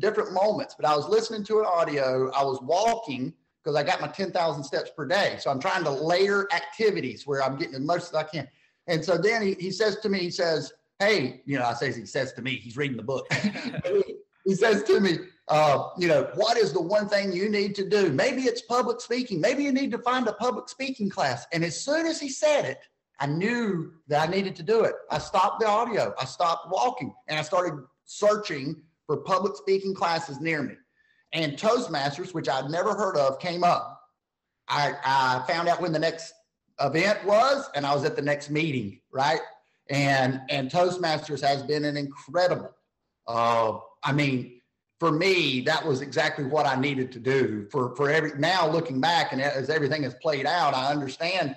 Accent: American